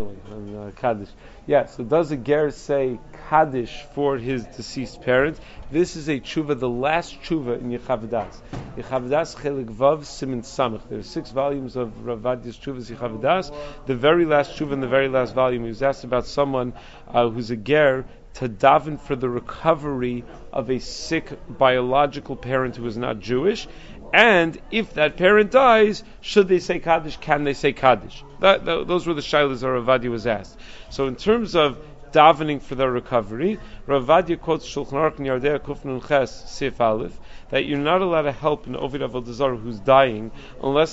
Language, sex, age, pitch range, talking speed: English, male, 40-59, 120-150 Hz, 160 wpm